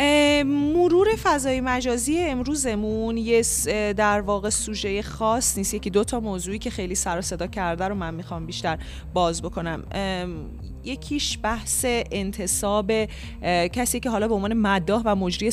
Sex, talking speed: female, 145 wpm